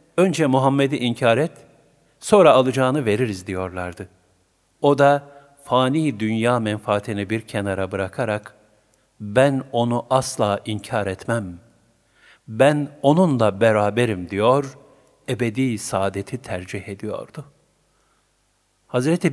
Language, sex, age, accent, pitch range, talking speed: Turkish, male, 50-69, native, 105-145 Hz, 95 wpm